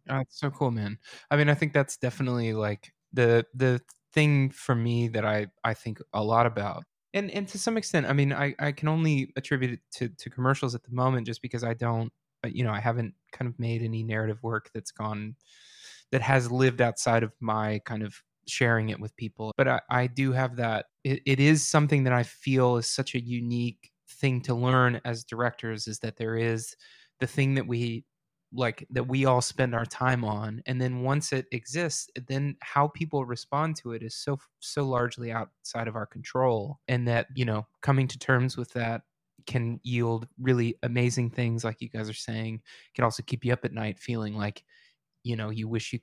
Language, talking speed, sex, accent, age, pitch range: English, 210 wpm, male, American, 20-39, 115-135 Hz